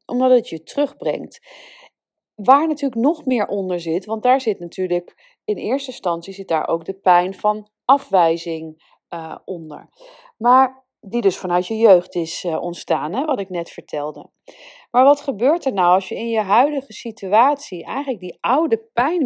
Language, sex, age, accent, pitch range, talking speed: Dutch, female, 40-59, Dutch, 175-265 Hz, 170 wpm